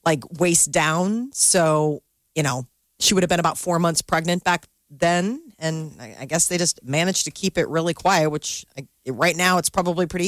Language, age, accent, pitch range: Japanese, 40-59, American, 155-185 Hz